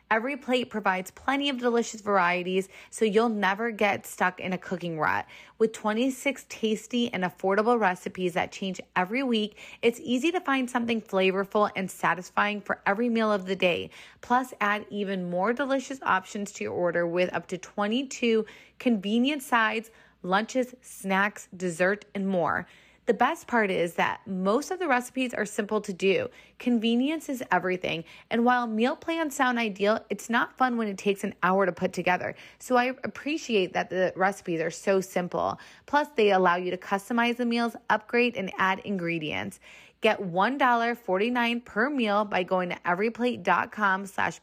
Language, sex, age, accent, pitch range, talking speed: English, female, 30-49, American, 185-240 Hz, 165 wpm